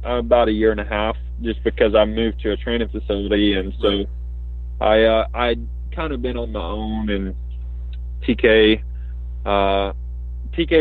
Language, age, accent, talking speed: English, 20-39, American, 160 wpm